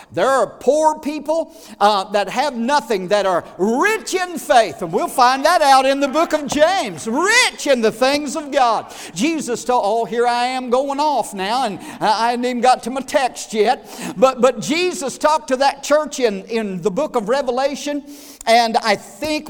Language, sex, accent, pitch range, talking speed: English, male, American, 215-285 Hz, 195 wpm